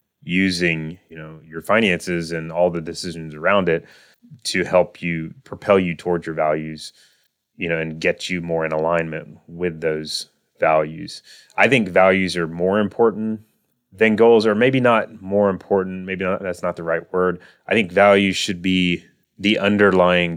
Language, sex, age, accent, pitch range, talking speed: English, male, 30-49, American, 80-100 Hz, 165 wpm